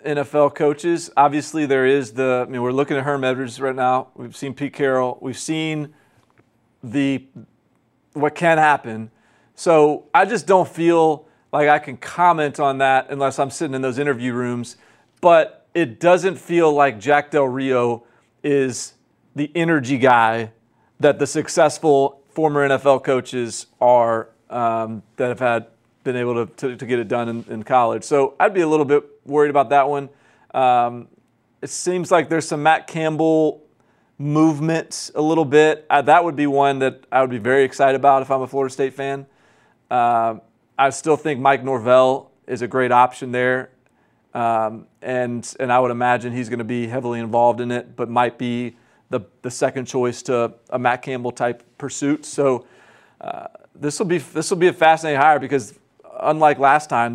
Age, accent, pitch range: 40-59, American, 125-150 Hz